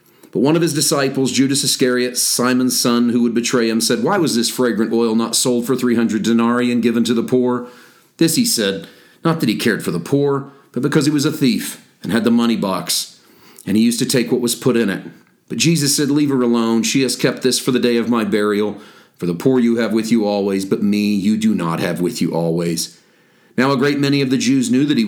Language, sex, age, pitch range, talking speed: English, male, 40-59, 105-130 Hz, 245 wpm